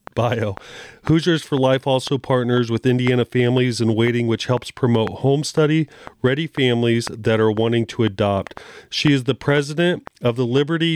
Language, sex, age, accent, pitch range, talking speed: English, male, 40-59, American, 115-140 Hz, 160 wpm